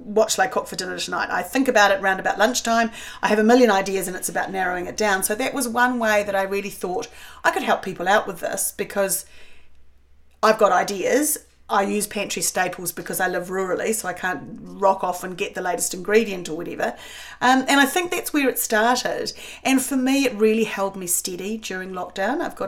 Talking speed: 225 wpm